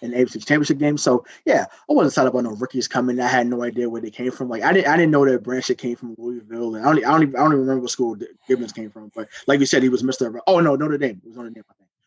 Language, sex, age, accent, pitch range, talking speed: English, male, 20-39, American, 125-145 Hz, 320 wpm